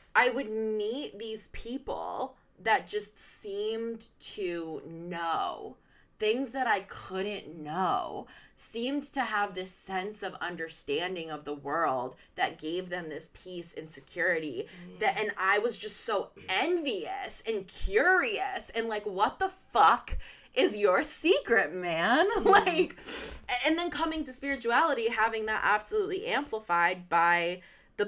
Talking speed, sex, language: 135 wpm, female, English